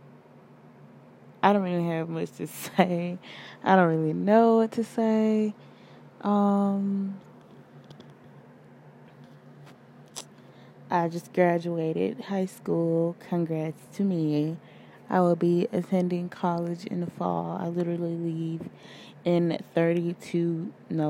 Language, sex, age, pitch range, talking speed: English, female, 20-39, 165-195 Hz, 105 wpm